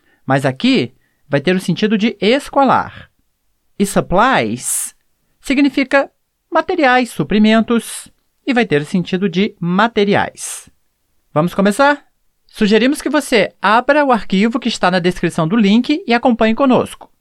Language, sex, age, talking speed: Portuguese, male, 30-49, 130 wpm